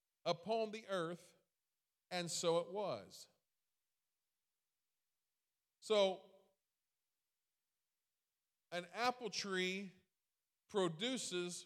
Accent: American